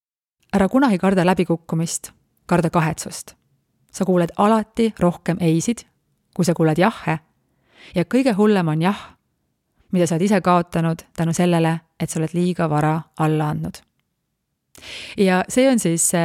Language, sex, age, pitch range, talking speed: English, female, 30-49, 160-195 Hz, 140 wpm